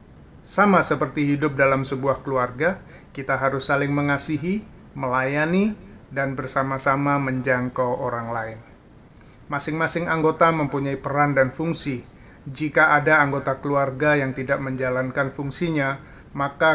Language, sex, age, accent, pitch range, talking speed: Indonesian, male, 30-49, native, 135-160 Hz, 110 wpm